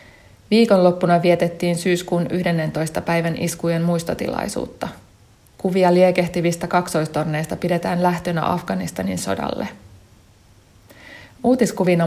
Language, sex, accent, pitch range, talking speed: Finnish, female, native, 150-180 Hz, 75 wpm